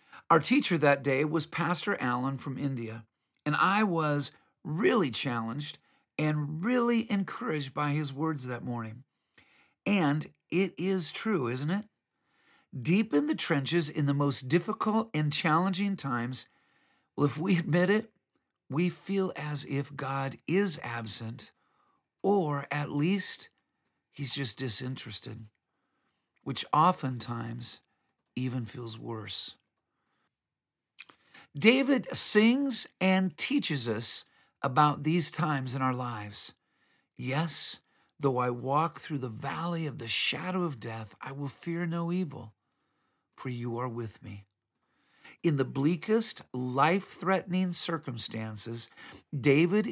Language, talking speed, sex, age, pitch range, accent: English, 120 wpm, male, 50-69, 125-175 Hz, American